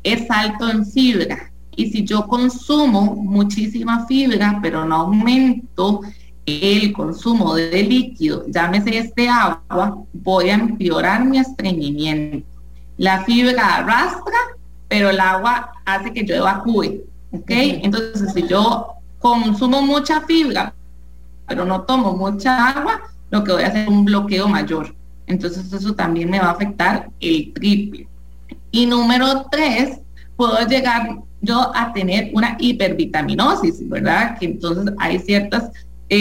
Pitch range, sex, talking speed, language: 190-240 Hz, female, 135 wpm, English